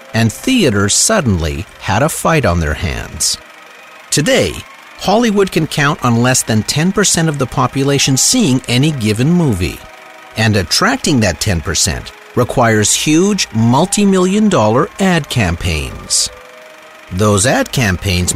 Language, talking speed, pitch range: English, 120 wpm, 105-160 Hz